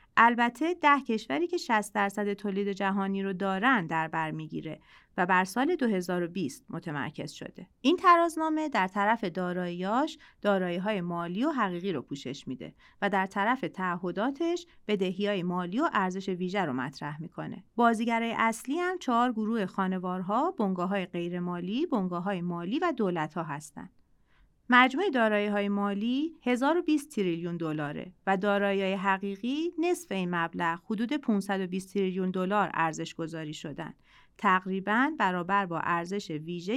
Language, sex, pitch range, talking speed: Persian, female, 175-240 Hz, 130 wpm